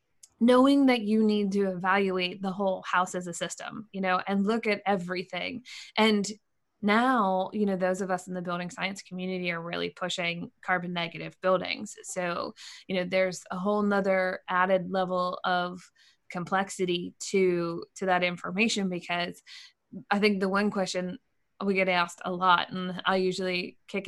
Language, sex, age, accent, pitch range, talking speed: English, female, 20-39, American, 185-205 Hz, 165 wpm